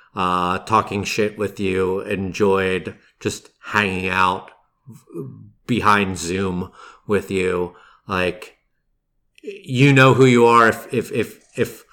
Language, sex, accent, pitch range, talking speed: English, male, American, 100-115 Hz, 115 wpm